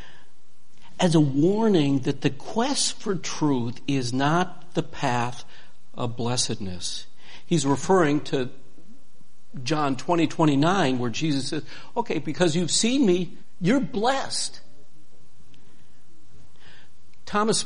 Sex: male